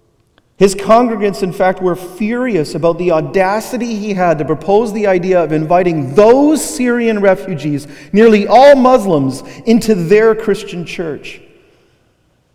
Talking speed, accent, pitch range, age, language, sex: 130 wpm, American, 135-200 Hz, 40-59, English, male